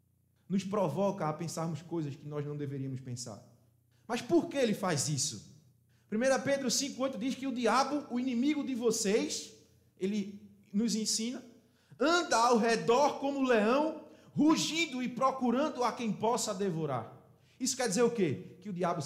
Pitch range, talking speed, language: 165-250 Hz, 155 wpm, Portuguese